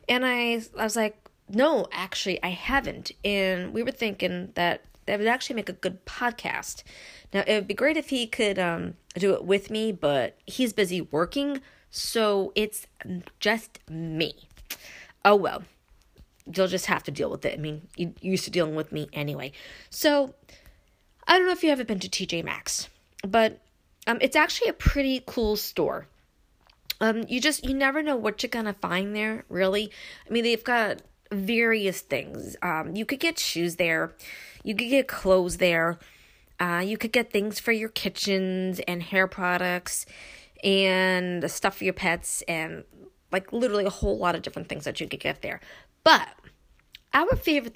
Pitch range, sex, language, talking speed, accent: 180-230 Hz, female, English, 175 wpm, American